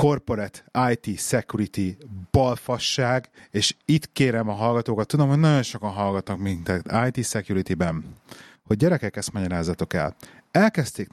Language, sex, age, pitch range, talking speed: Hungarian, male, 30-49, 105-135 Hz, 125 wpm